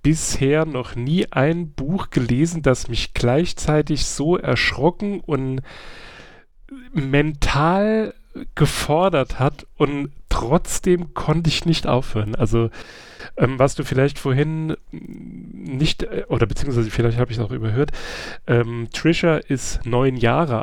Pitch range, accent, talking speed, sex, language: 125-155 Hz, German, 120 wpm, male, German